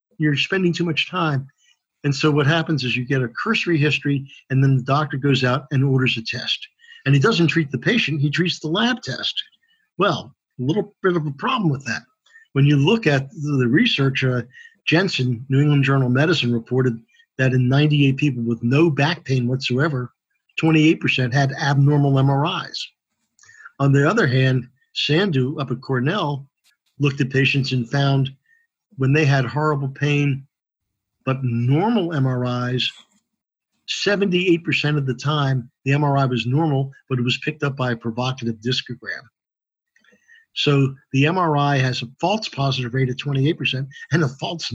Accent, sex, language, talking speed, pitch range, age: American, male, English, 165 wpm, 130-160 Hz, 50-69